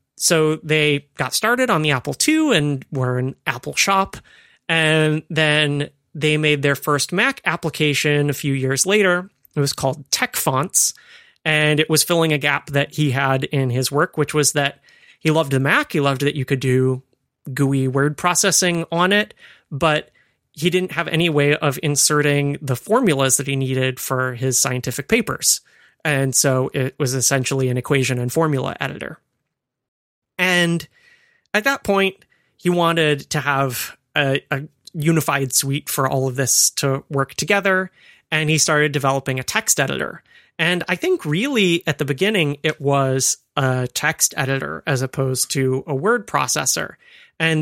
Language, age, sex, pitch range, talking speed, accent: English, 30-49, male, 135-170 Hz, 165 wpm, American